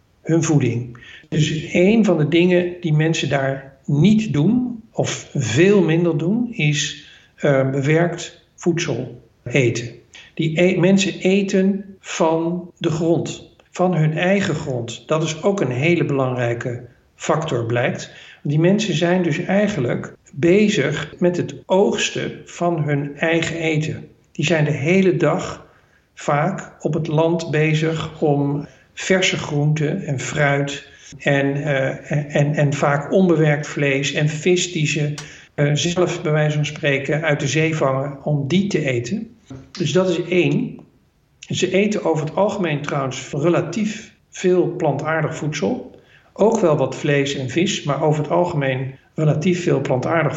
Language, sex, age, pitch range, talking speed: Dutch, male, 50-69, 145-175 Hz, 140 wpm